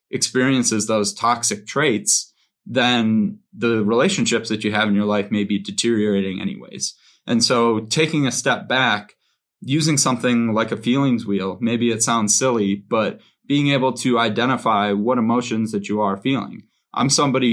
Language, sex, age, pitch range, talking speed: English, male, 20-39, 105-125 Hz, 160 wpm